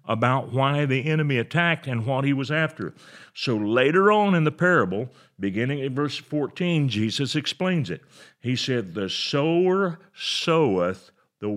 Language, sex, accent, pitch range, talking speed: English, male, American, 110-155 Hz, 150 wpm